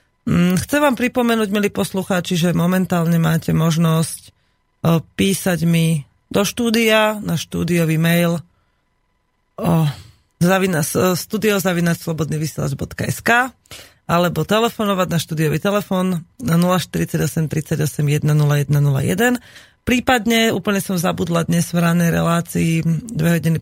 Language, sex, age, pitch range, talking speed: Slovak, female, 30-49, 160-195 Hz, 90 wpm